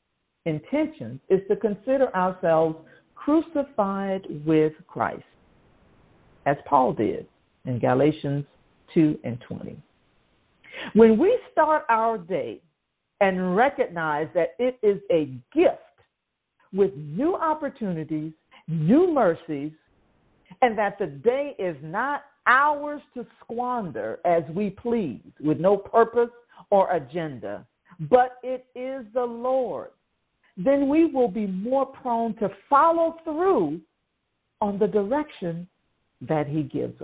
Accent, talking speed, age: American, 115 wpm, 50-69